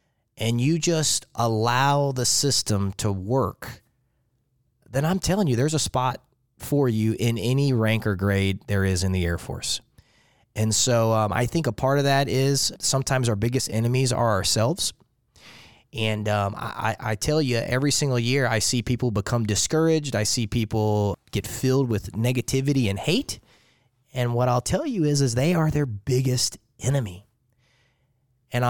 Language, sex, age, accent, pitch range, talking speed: English, male, 20-39, American, 115-135 Hz, 165 wpm